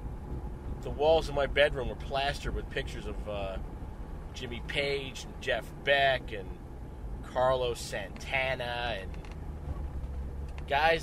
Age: 30-49